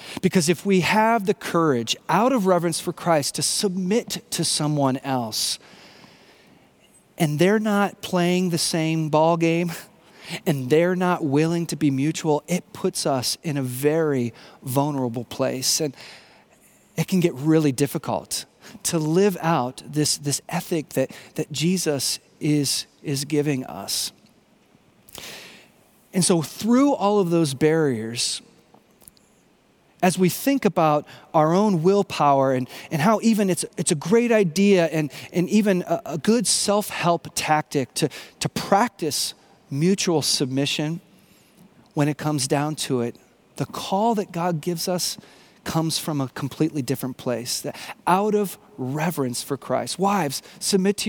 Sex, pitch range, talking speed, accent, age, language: male, 145-185 Hz, 140 wpm, American, 30-49, English